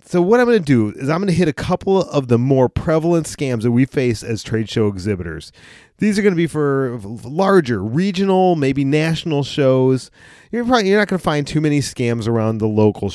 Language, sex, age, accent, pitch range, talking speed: English, male, 30-49, American, 110-150 Hz, 225 wpm